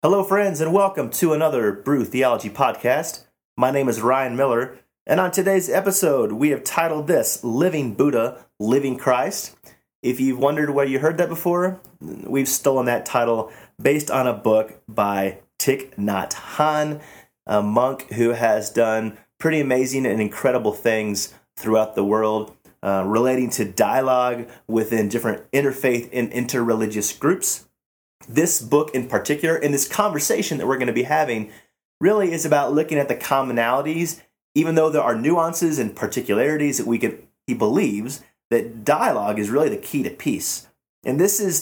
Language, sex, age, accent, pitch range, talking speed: English, male, 30-49, American, 115-150 Hz, 160 wpm